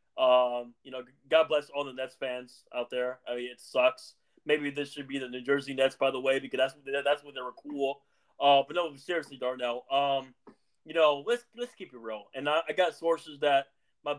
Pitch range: 140-205 Hz